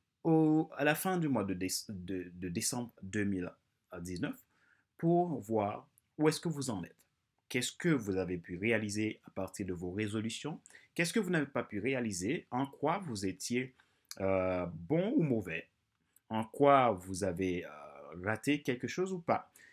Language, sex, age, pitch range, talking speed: French, male, 30-49, 95-140 Hz, 165 wpm